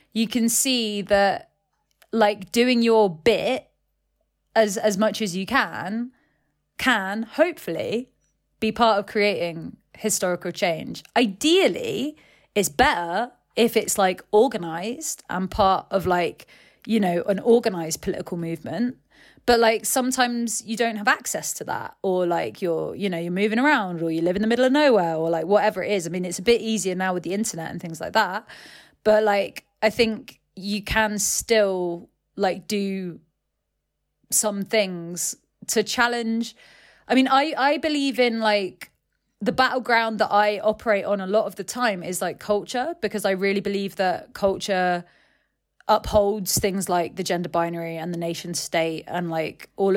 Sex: female